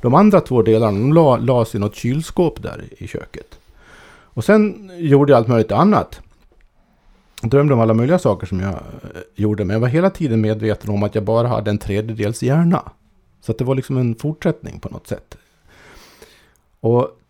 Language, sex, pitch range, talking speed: Swedish, male, 105-125 Hz, 185 wpm